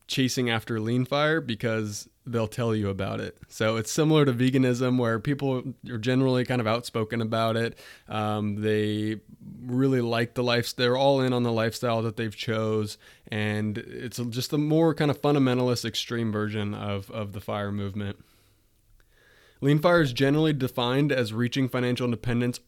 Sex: male